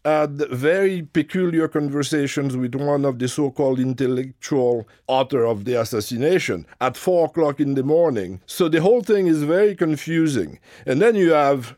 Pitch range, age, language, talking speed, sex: 120-155 Hz, 50-69, English, 160 wpm, male